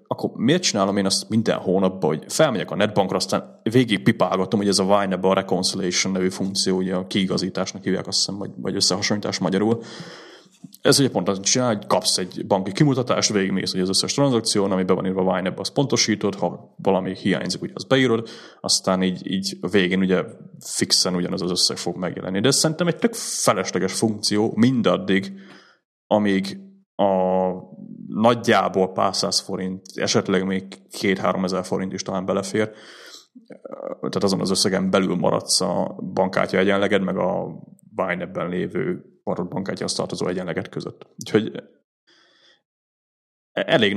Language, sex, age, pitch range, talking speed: Hungarian, male, 30-49, 95-110 Hz, 150 wpm